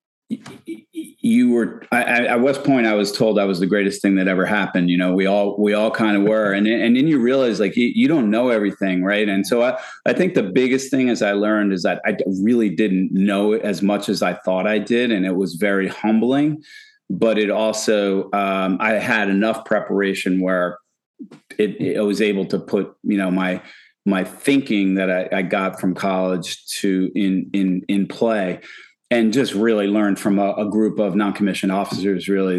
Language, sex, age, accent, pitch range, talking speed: English, male, 40-59, American, 95-110 Hz, 205 wpm